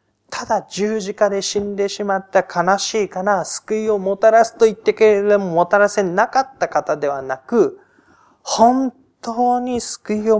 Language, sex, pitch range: Japanese, male, 130-205 Hz